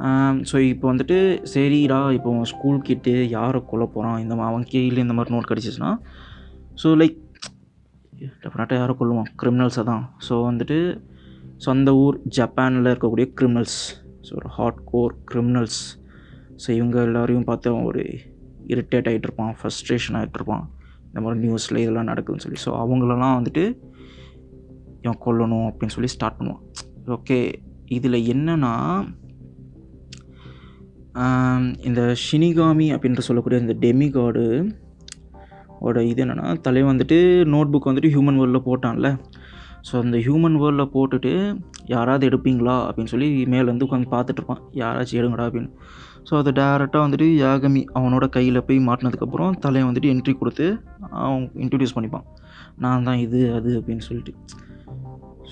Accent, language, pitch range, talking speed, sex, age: native, Tamil, 115-135 Hz, 125 wpm, male, 20-39